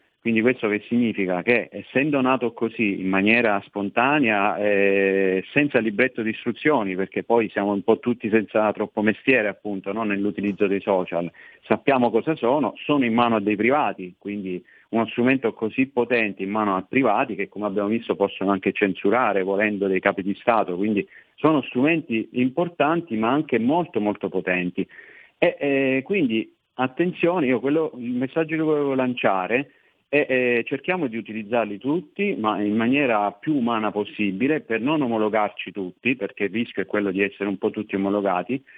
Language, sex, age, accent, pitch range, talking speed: Italian, male, 40-59, native, 100-130 Hz, 165 wpm